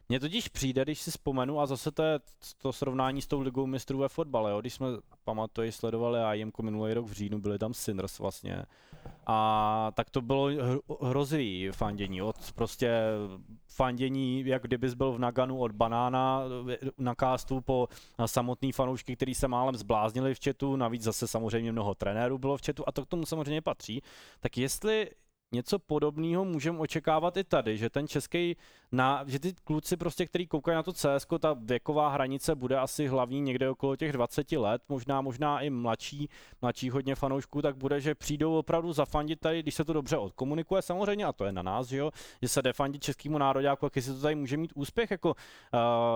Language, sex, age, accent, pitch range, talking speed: Czech, male, 20-39, native, 120-150 Hz, 190 wpm